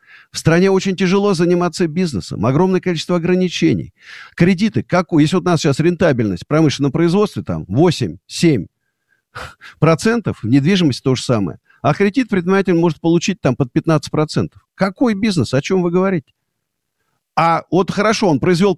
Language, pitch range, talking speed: Russian, 130-180 Hz, 145 wpm